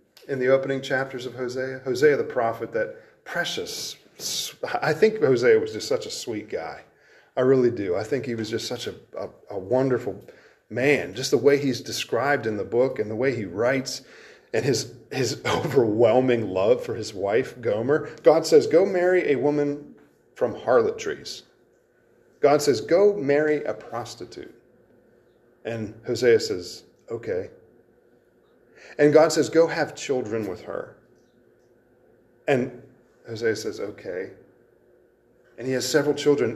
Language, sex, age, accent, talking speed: English, male, 40-59, American, 150 wpm